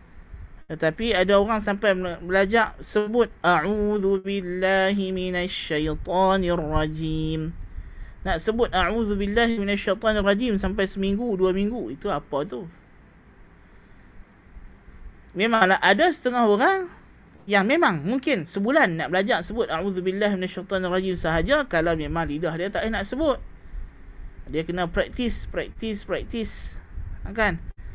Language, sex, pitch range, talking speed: Malay, male, 160-210 Hz, 120 wpm